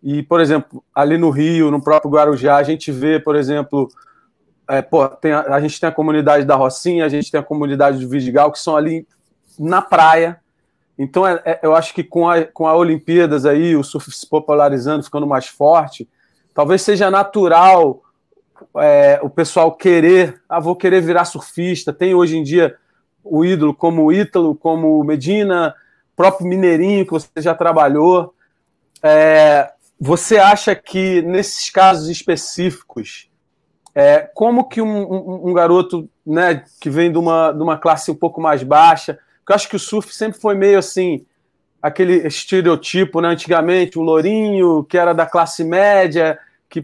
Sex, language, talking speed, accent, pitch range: male, Portuguese, 170 wpm, Brazilian, 155-185 Hz